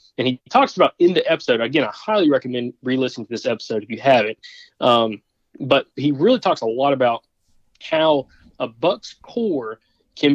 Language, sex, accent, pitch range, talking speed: English, male, American, 120-165 Hz, 180 wpm